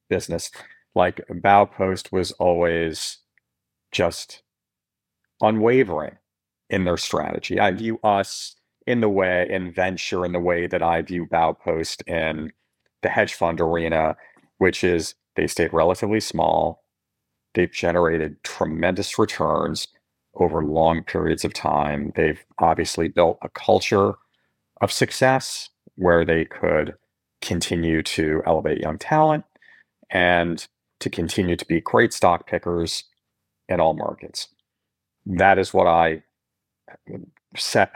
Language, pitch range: English, 80-100 Hz